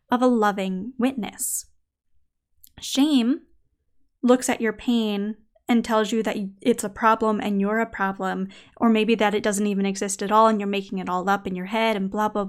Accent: American